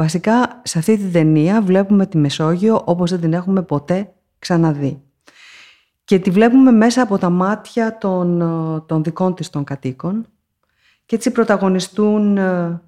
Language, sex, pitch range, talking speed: Greek, female, 165-220 Hz, 135 wpm